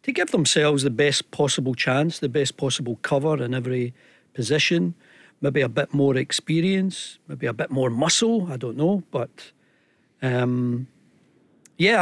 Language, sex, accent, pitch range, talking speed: English, male, British, 130-155 Hz, 150 wpm